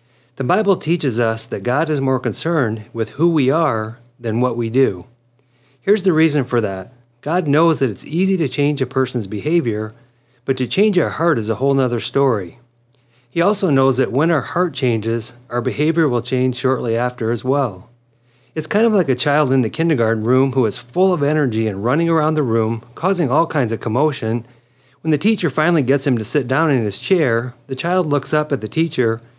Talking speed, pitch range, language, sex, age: 210 wpm, 120-155 Hz, English, male, 40-59